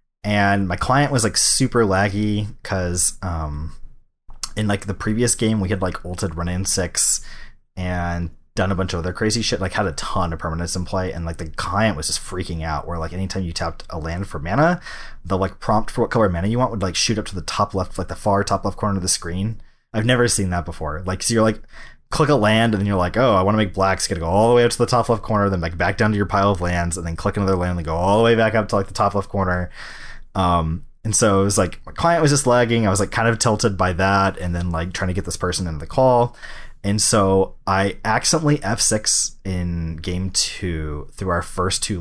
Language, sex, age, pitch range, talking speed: English, male, 20-39, 90-110 Hz, 265 wpm